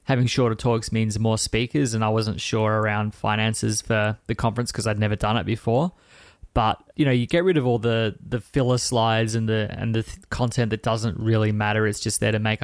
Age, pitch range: 20-39, 110-120 Hz